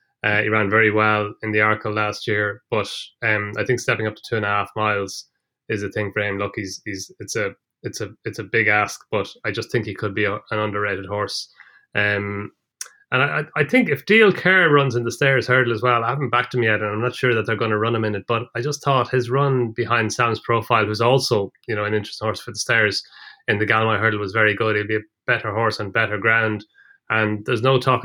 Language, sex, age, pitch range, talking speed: English, male, 20-39, 105-120 Hz, 255 wpm